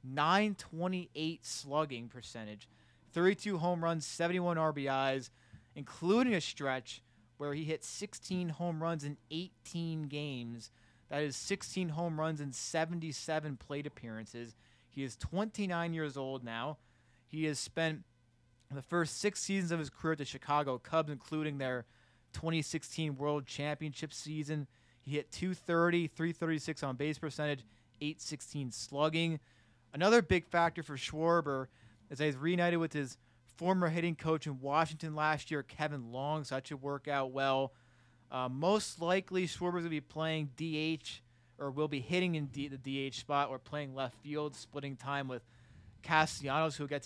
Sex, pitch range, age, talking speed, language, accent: male, 130-165 Hz, 20-39, 150 wpm, English, American